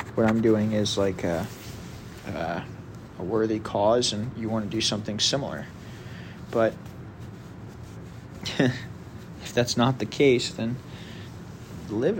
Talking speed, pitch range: 125 wpm, 105-120 Hz